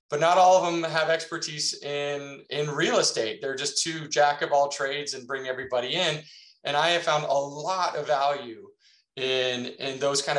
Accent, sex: American, male